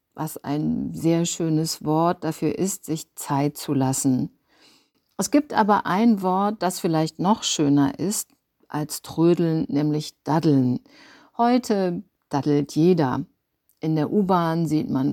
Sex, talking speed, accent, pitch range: female, 130 wpm, German, 150-205 Hz